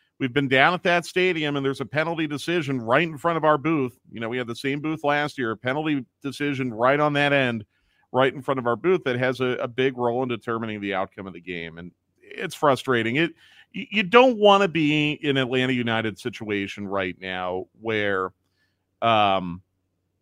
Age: 40-59